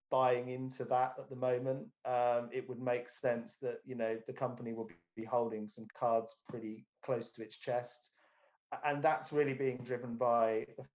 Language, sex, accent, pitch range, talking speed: English, male, British, 110-130 Hz, 170 wpm